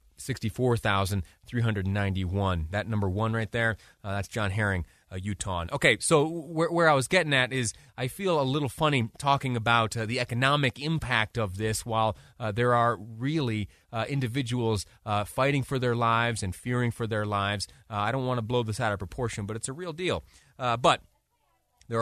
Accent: American